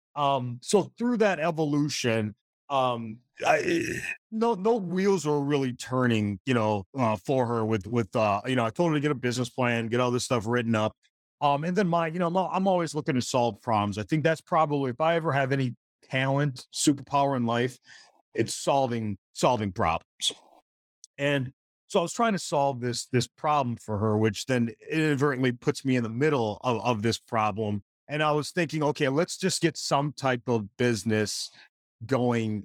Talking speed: 190 wpm